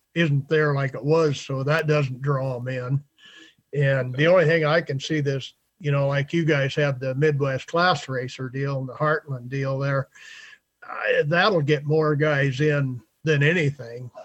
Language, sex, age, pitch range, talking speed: English, male, 50-69, 140-160 Hz, 180 wpm